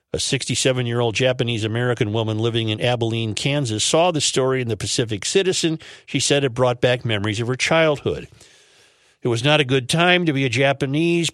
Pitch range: 115-140 Hz